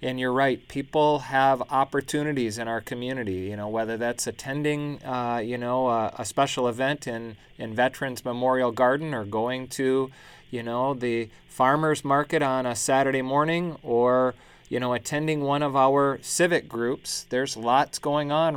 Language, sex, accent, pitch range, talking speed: English, male, American, 120-145 Hz, 165 wpm